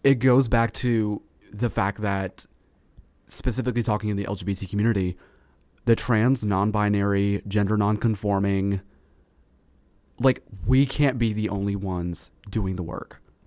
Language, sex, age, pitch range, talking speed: English, male, 30-49, 95-125 Hz, 125 wpm